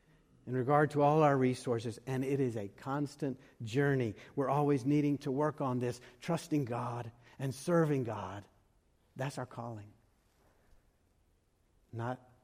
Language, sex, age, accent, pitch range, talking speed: English, male, 60-79, American, 120-155 Hz, 135 wpm